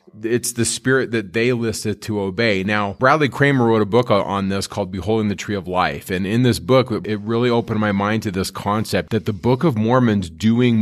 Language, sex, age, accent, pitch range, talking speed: English, male, 30-49, American, 100-115 Hz, 220 wpm